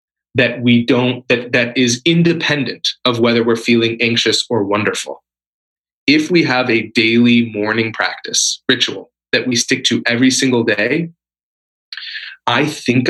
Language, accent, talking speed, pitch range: English, American, 140 wpm, 110-130 Hz